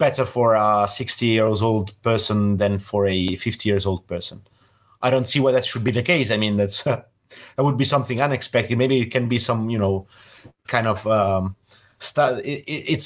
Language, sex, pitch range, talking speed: English, male, 105-135 Hz, 200 wpm